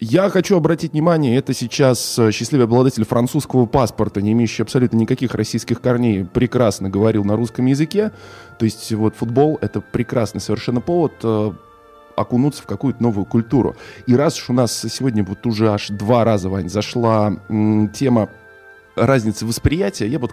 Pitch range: 110-150 Hz